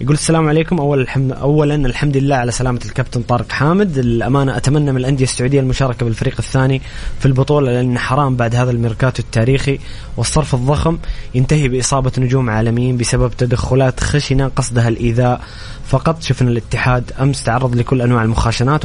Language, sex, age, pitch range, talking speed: English, male, 20-39, 120-145 Hz, 155 wpm